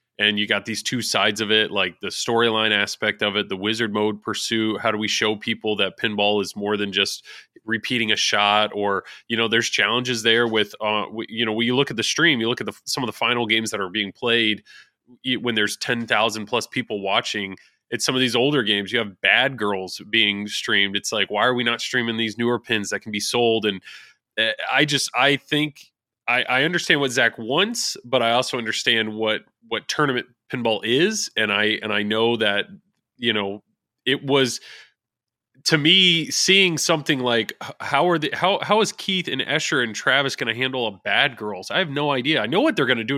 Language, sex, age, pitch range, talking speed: English, male, 20-39, 105-135 Hz, 215 wpm